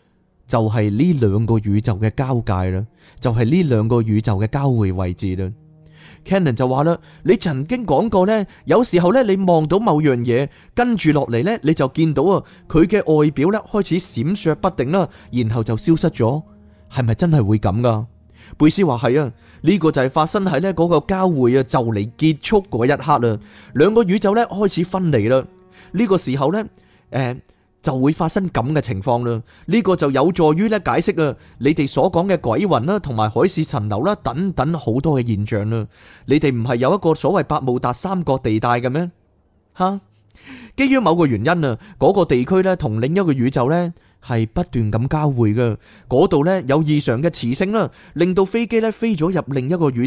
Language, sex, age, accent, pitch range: Chinese, male, 20-39, native, 120-180 Hz